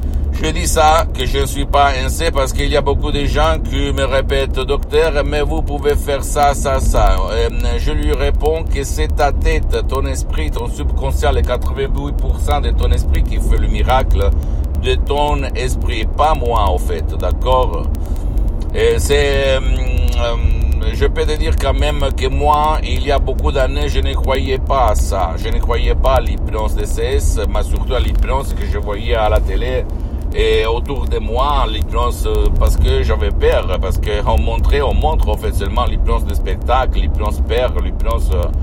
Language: Italian